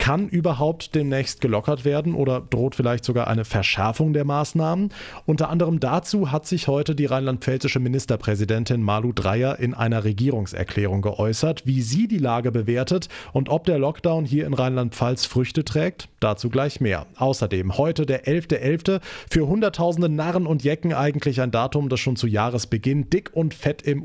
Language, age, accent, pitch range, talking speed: German, 30-49, German, 115-160 Hz, 160 wpm